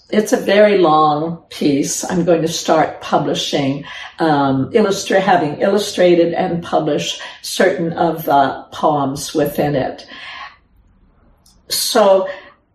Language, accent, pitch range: English, American, 165-210 Hz